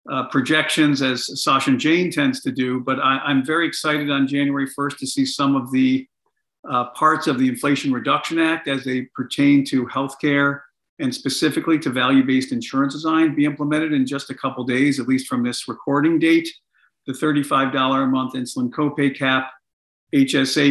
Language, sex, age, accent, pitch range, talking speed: English, male, 50-69, American, 130-160 Hz, 175 wpm